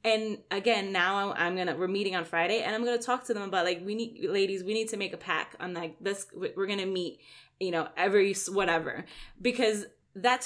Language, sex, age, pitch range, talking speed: English, female, 20-39, 185-235 Hz, 235 wpm